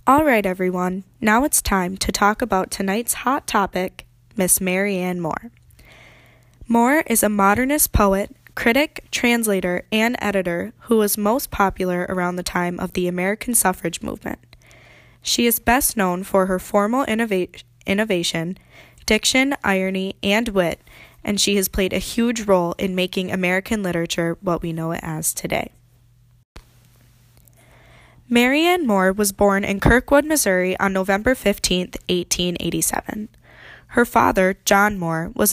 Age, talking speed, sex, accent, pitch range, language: 10-29, 140 wpm, female, American, 180-220 Hz, English